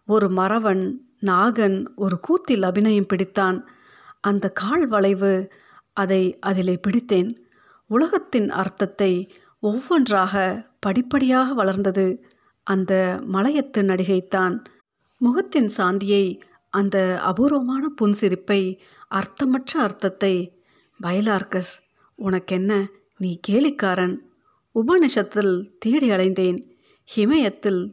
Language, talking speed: Tamil, 75 wpm